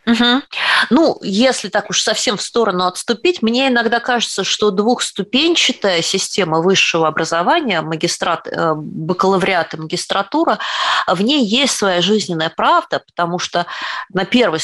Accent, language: native, Russian